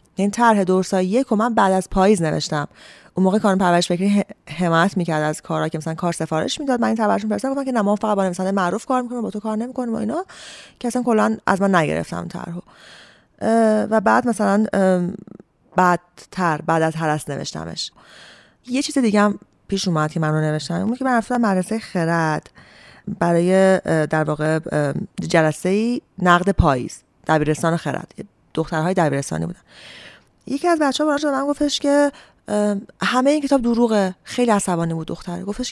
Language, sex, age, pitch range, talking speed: Persian, female, 30-49, 175-240 Hz, 170 wpm